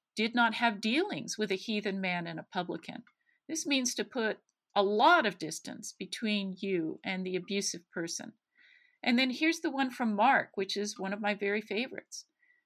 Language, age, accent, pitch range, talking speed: English, 50-69, American, 205-255 Hz, 185 wpm